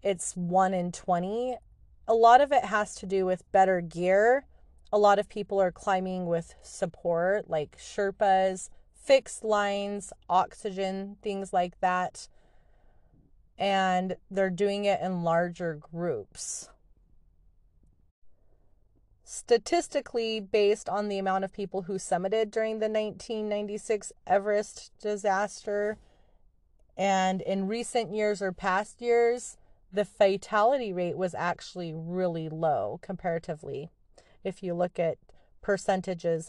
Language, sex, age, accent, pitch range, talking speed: English, female, 30-49, American, 170-205 Hz, 115 wpm